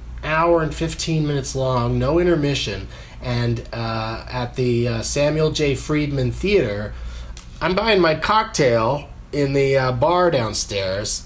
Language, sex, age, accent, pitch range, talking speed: English, male, 30-49, American, 115-155 Hz, 135 wpm